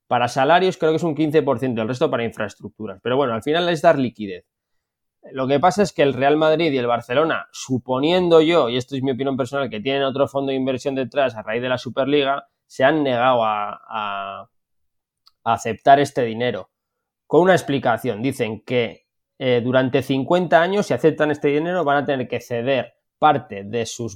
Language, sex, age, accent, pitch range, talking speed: Spanish, male, 20-39, Spanish, 120-150 Hz, 195 wpm